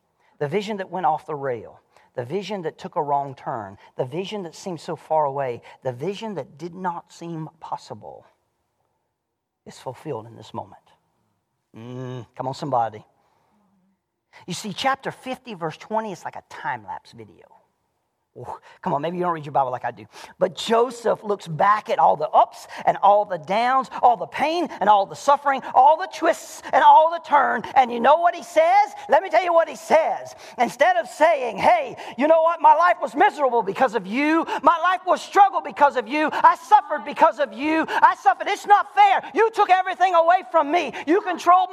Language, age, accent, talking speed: English, 40-59, American, 200 wpm